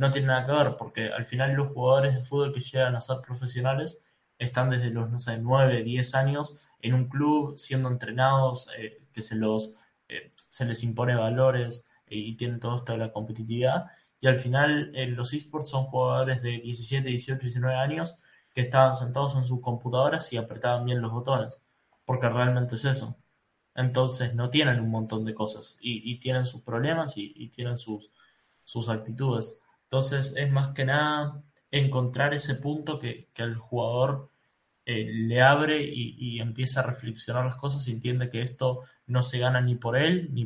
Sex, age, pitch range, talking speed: male, 10-29, 120-135 Hz, 190 wpm